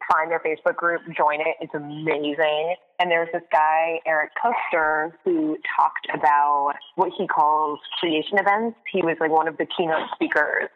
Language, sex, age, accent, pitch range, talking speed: English, female, 20-39, American, 150-185 Hz, 165 wpm